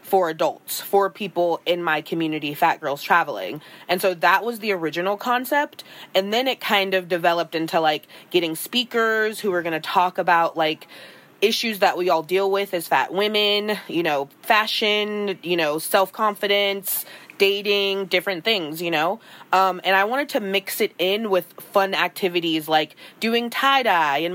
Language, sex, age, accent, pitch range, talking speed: English, female, 20-39, American, 175-210 Hz, 175 wpm